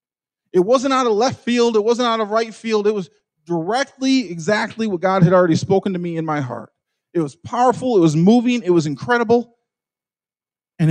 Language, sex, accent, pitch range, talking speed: English, male, American, 155-210 Hz, 200 wpm